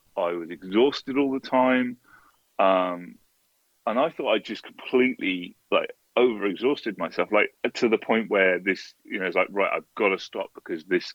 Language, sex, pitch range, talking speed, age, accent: English, male, 95-135 Hz, 185 wpm, 30-49, British